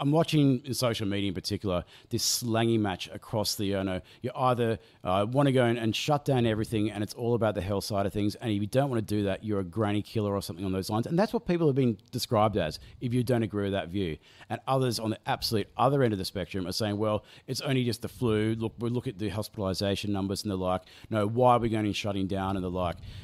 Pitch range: 100-125 Hz